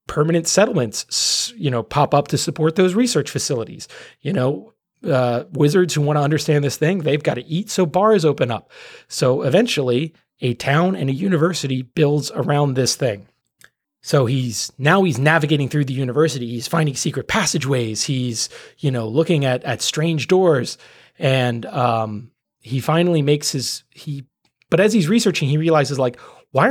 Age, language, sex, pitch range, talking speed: 30-49, English, male, 130-165 Hz, 170 wpm